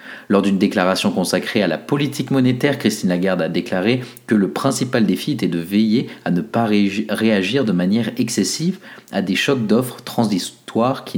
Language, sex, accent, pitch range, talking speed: French, male, French, 95-120 Hz, 170 wpm